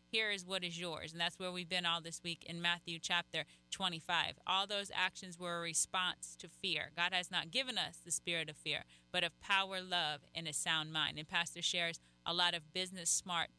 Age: 30-49